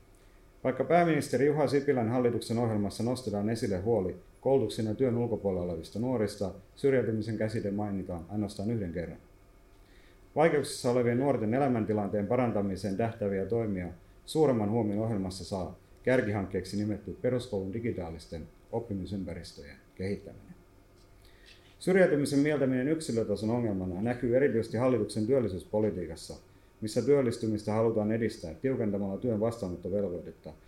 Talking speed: 105 wpm